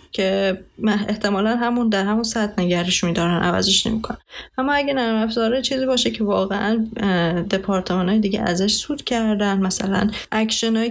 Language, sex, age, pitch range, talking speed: Persian, female, 20-39, 175-220 Hz, 145 wpm